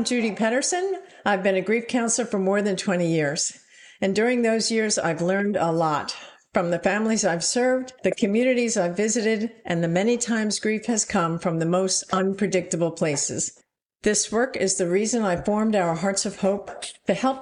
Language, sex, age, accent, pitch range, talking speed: English, female, 50-69, American, 175-230 Hz, 185 wpm